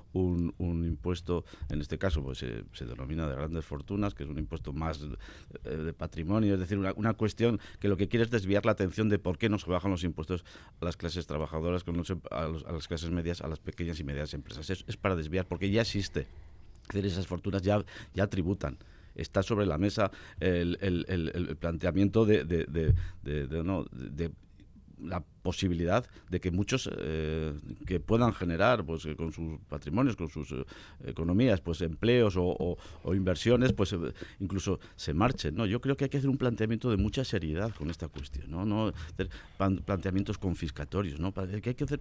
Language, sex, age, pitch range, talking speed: Spanish, male, 50-69, 80-105 Hz, 205 wpm